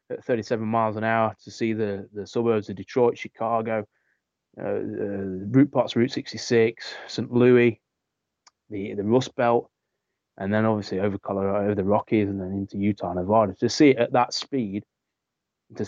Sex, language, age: male, English, 20-39